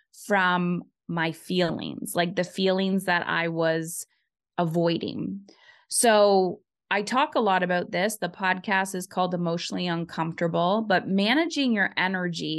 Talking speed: 130 wpm